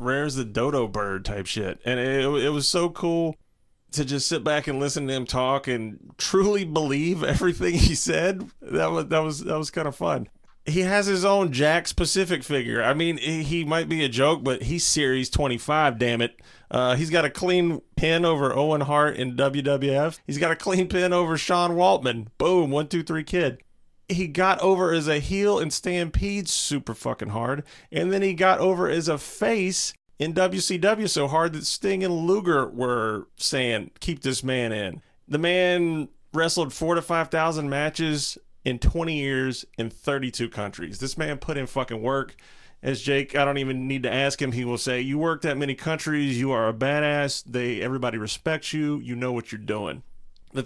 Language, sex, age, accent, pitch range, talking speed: English, male, 30-49, American, 130-165 Hz, 195 wpm